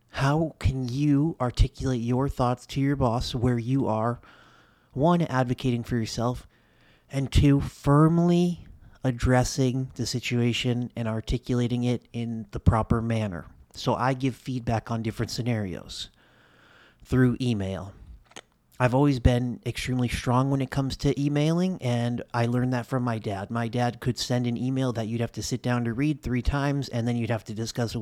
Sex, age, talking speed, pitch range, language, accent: male, 30-49, 165 wpm, 115-135 Hz, English, American